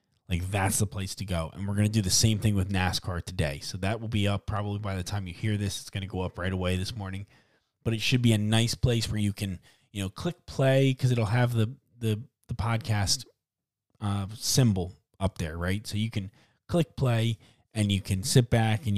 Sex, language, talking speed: male, English, 230 wpm